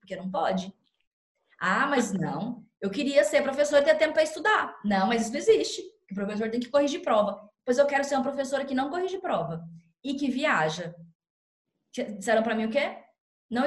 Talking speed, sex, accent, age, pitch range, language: 200 wpm, female, Brazilian, 20-39, 200-280 Hz, Portuguese